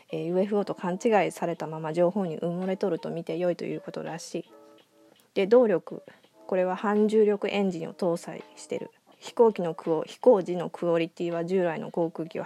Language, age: Japanese, 20-39